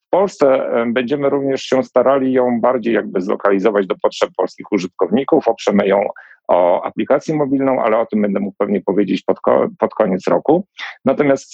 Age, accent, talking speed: 50-69, native, 155 wpm